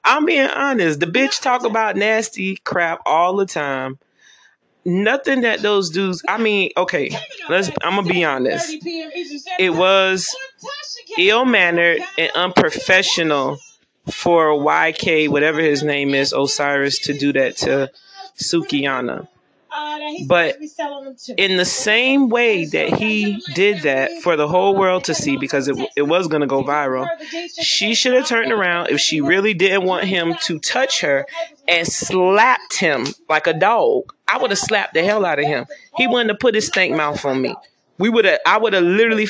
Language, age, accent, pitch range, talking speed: English, 30-49, American, 175-290 Hz, 165 wpm